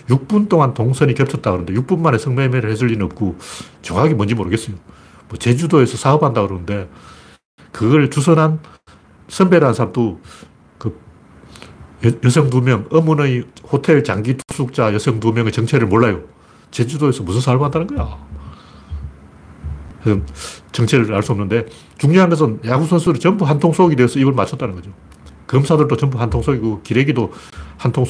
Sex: male